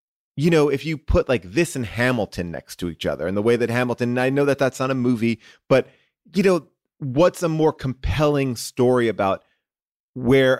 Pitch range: 110-140 Hz